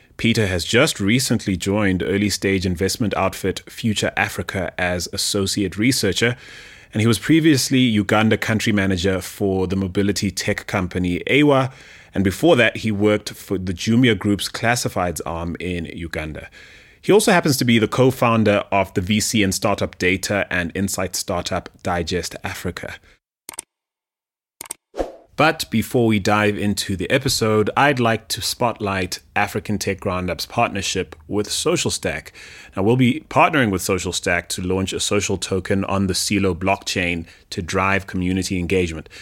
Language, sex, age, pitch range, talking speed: English, male, 30-49, 95-115 Hz, 145 wpm